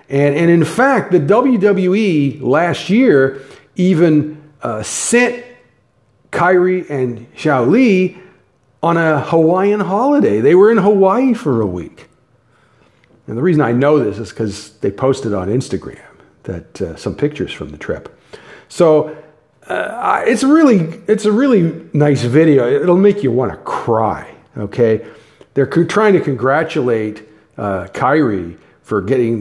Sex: male